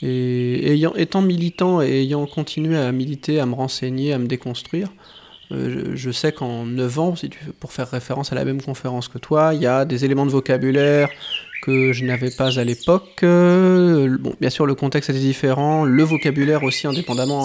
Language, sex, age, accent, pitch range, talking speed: French, male, 20-39, French, 130-160 Hz, 205 wpm